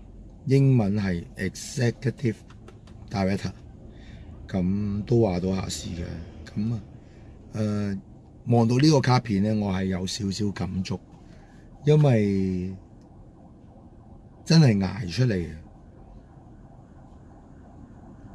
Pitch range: 95-115 Hz